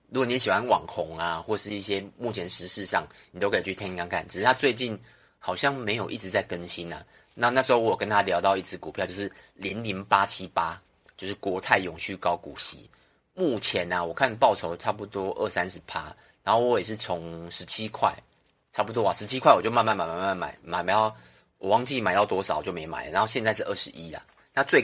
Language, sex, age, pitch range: Chinese, male, 30-49, 85-110 Hz